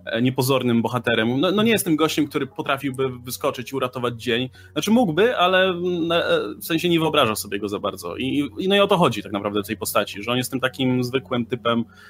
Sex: male